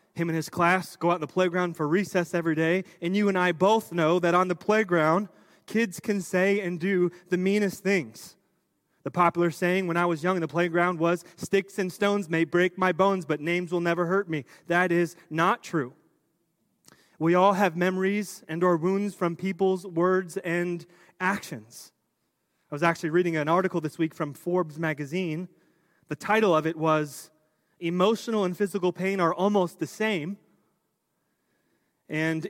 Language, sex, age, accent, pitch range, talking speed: English, male, 30-49, American, 165-190 Hz, 175 wpm